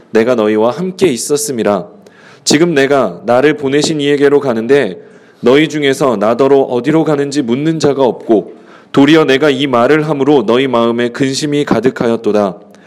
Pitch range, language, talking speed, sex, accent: 130-165 Hz, English, 125 wpm, male, Korean